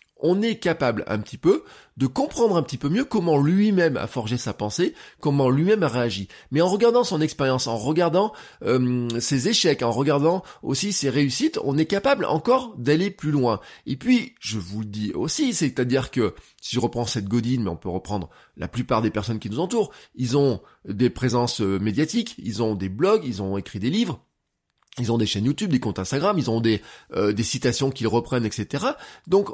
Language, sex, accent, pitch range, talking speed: French, male, French, 120-190 Hz, 205 wpm